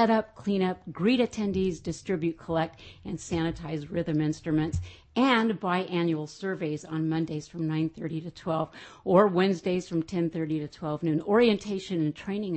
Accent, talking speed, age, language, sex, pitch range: American, 150 wpm, 50-69, English, female, 160-190 Hz